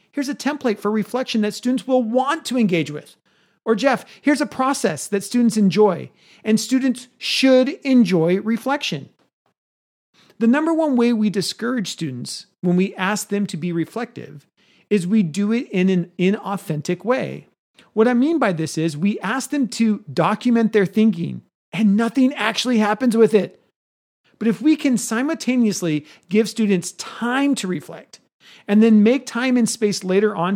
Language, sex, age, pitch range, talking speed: English, male, 40-59, 185-245 Hz, 165 wpm